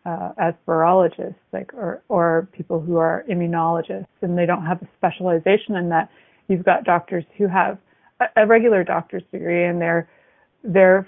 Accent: American